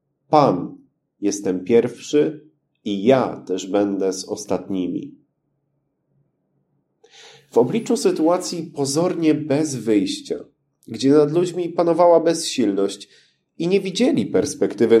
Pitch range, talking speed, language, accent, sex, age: 115-160 Hz, 95 wpm, Polish, native, male, 30-49